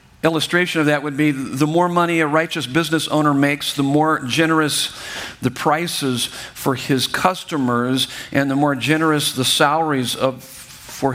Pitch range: 125-150 Hz